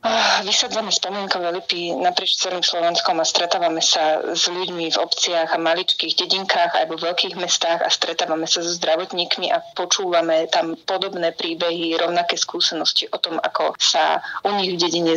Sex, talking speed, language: female, 160 wpm, Slovak